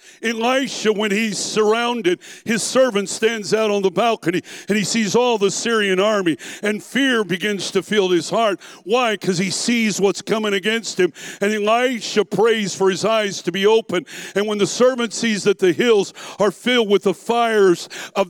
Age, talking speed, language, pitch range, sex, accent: 60-79, 185 wpm, English, 200-245 Hz, male, American